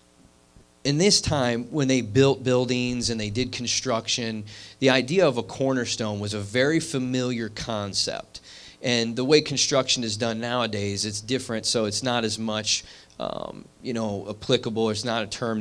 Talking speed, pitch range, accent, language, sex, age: 165 wpm, 105-135 Hz, American, English, male, 30-49